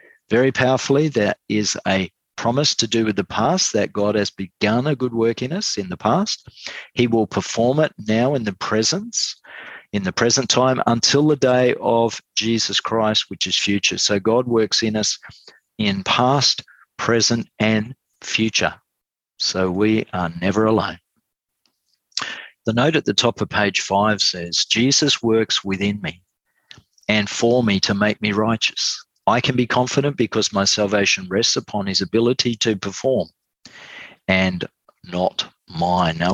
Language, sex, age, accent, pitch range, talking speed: English, male, 40-59, Australian, 100-120 Hz, 160 wpm